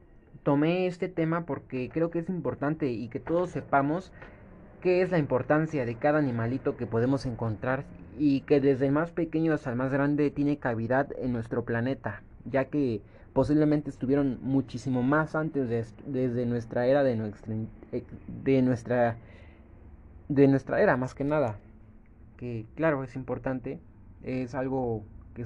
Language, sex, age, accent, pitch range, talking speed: Spanish, male, 30-49, Mexican, 115-145 Hz, 145 wpm